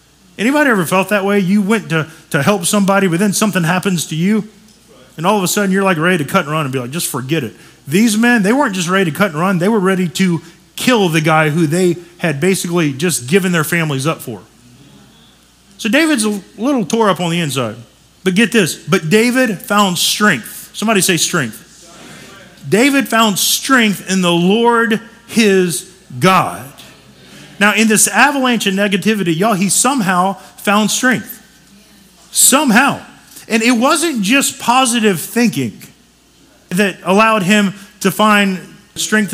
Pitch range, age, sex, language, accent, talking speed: 170-215 Hz, 40-59, male, English, American, 170 wpm